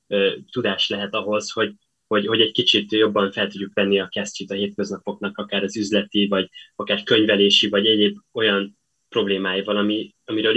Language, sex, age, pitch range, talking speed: Hungarian, male, 20-39, 100-110 Hz, 160 wpm